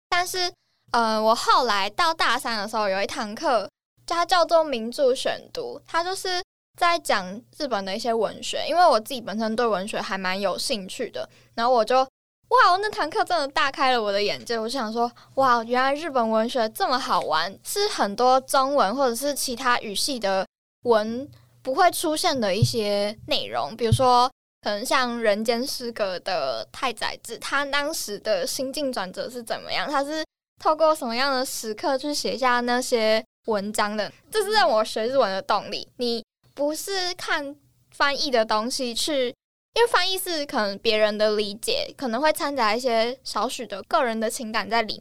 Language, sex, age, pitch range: Chinese, female, 10-29, 220-310 Hz